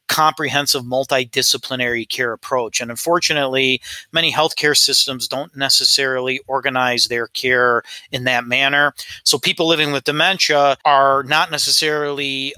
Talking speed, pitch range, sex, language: 120 wpm, 125-145 Hz, male, English